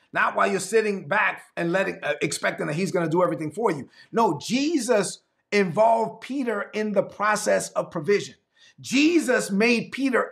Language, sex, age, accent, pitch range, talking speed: English, male, 30-49, American, 195-250 Hz, 170 wpm